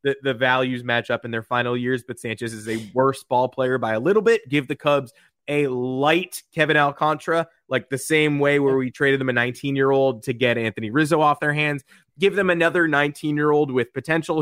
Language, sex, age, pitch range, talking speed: English, male, 20-39, 115-145 Hz, 210 wpm